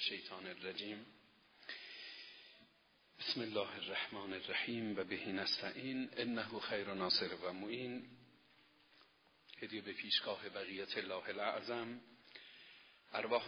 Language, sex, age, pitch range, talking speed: Persian, male, 50-69, 100-115 Hz, 100 wpm